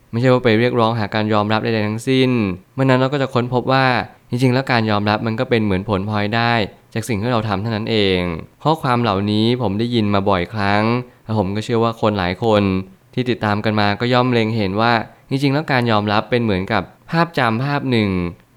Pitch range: 100-120 Hz